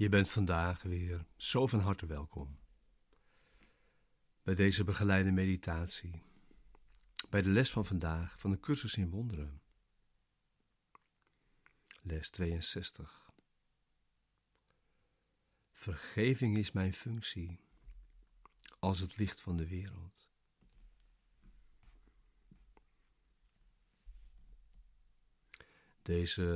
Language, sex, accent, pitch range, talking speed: Dutch, male, Dutch, 85-100 Hz, 80 wpm